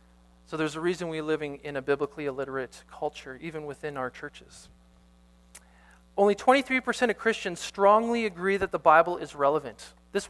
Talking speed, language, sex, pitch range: 155 wpm, English, male, 125-180 Hz